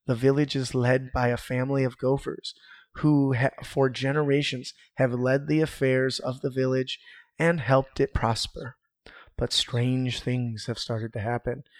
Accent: American